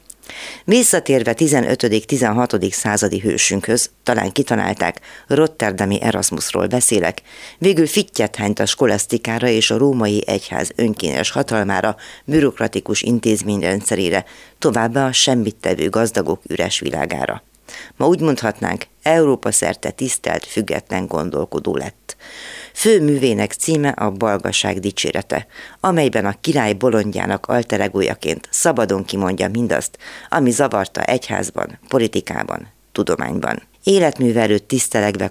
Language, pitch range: Hungarian, 100-130 Hz